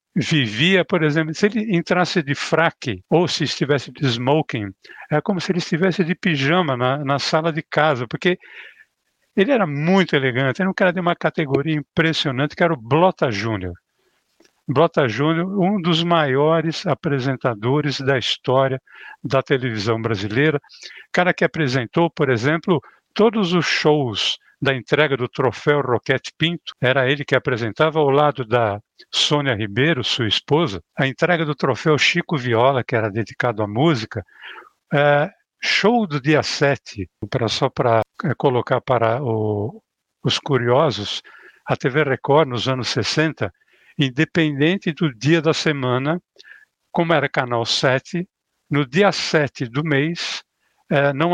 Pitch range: 130-170 Hz